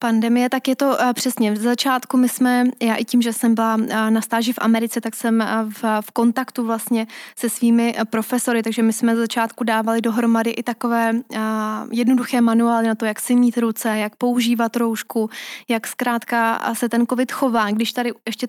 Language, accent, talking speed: Czech, native, 180 wpm